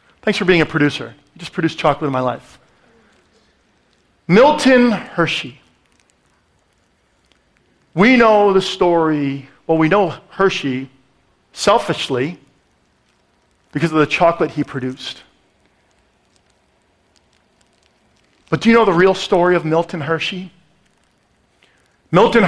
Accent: American